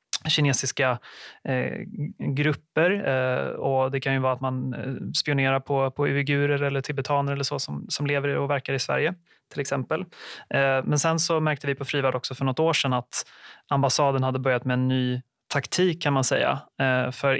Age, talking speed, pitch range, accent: 30-49, 185 wpm, 130-145 Hz, native